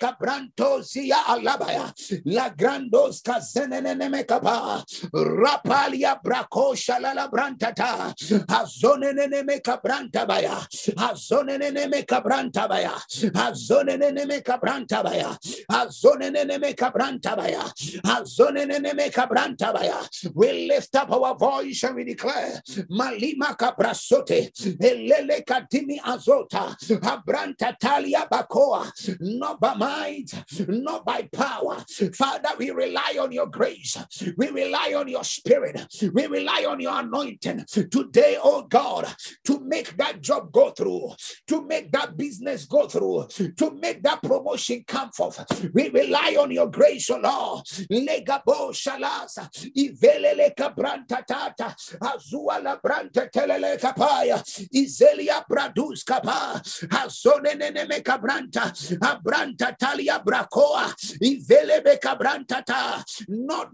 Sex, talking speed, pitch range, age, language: male, 85 wpm, 245-295 Hz, 50-69, English